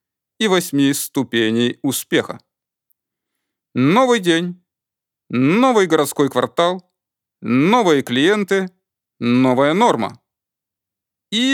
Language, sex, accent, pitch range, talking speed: Russian, male, native, 145-225 Hz, 75 wpm